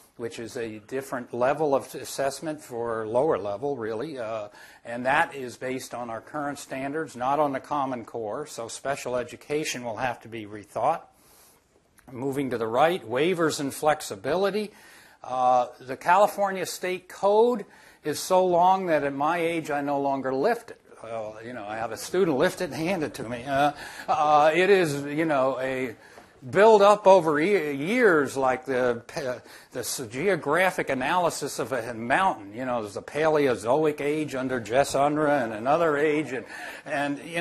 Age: 60-79